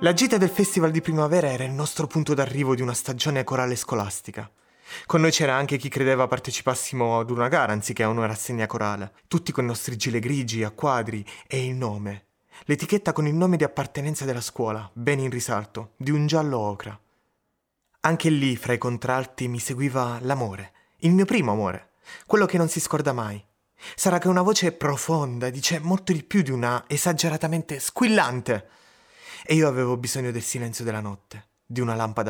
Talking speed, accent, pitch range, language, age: 185 wpm, native, 115-150 Hz, Italian, 30-49